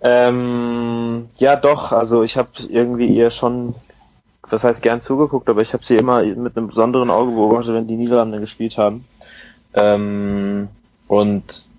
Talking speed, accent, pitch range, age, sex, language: 155 wpm, German, 100-115 Hz, 20-39, male, German